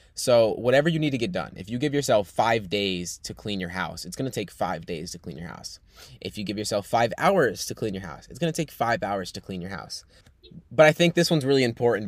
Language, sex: English, male